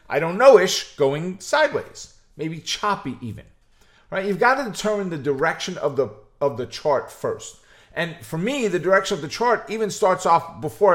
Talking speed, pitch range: 180 wpm, 135-205 Hz